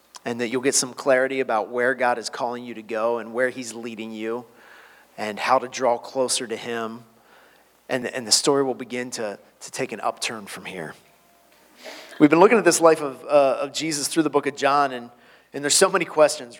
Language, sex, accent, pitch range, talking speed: English, male, American, 120-145 Hz, 215 wpm